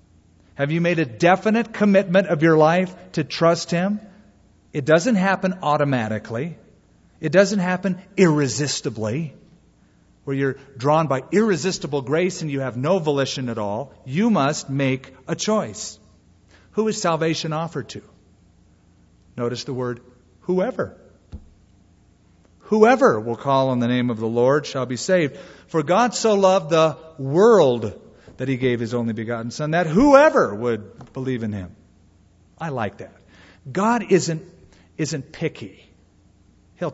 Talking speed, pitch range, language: 140 wpm, 110-180 Hz, English